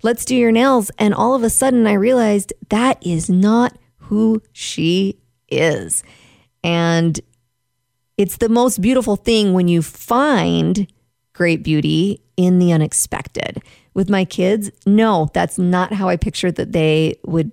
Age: 40-59